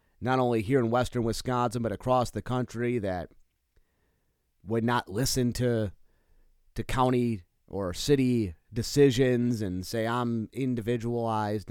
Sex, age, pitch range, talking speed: male, 30-49, 105-150 Hz, 125 wpm